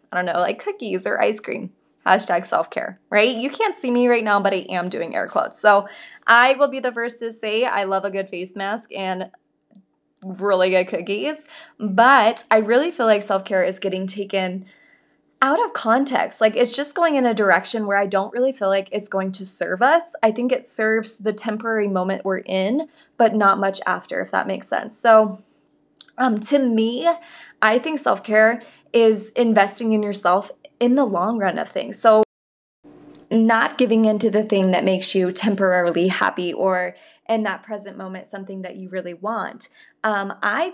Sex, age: female, 20-39